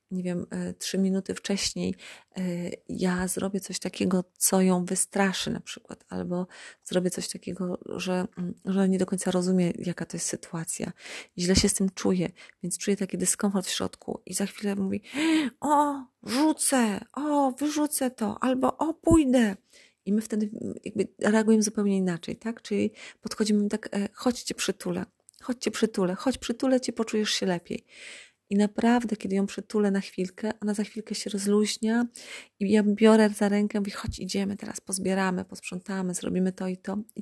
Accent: native